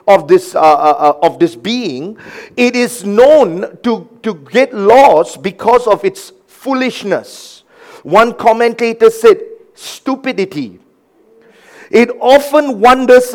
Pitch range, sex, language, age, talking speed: 195-295 Hz, male, English, 50-69, 115 wpm